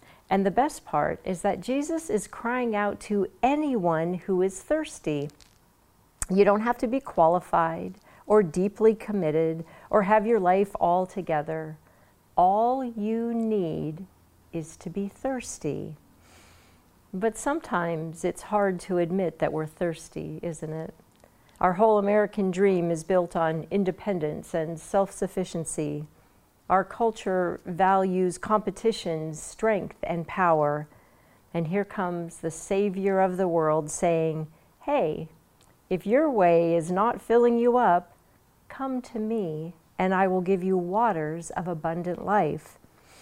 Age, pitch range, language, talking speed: 50-69, 165-210 Hz, English, 130 wpm